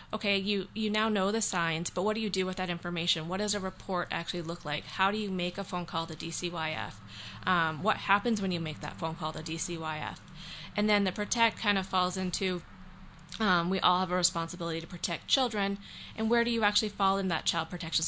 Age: 20-39